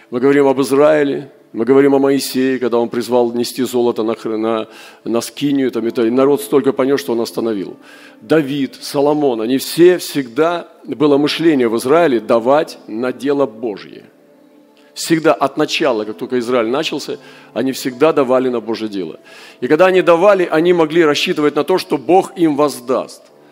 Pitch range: 115-155 Hz